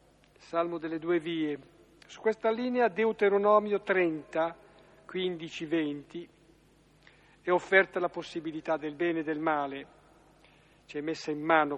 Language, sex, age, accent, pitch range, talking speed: Italian, male, 50-69, native, 155-195 Hz, 115 wpm